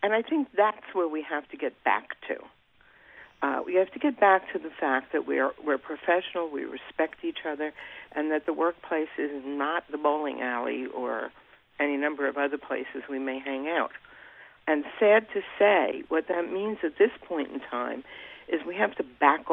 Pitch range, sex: 145-205 Hz, female